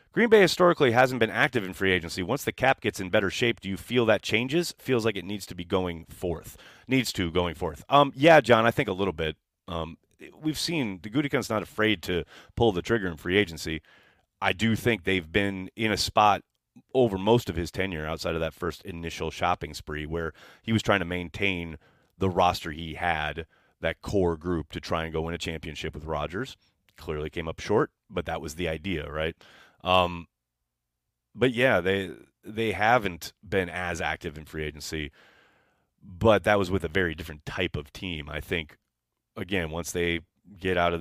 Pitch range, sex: 80-105 Hz, male